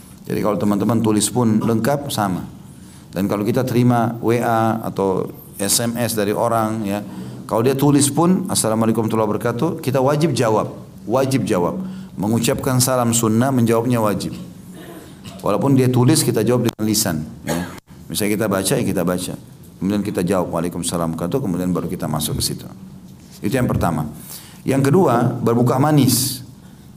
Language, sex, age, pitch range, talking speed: Indonesian, male, 40-59, 105-135 Hz, 145 wpm